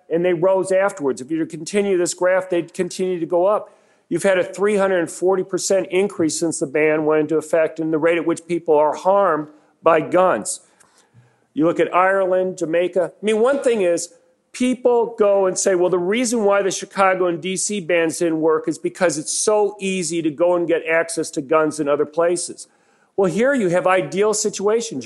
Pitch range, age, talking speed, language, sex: 160-195 Hz, 50-69, 195 wpm, English, male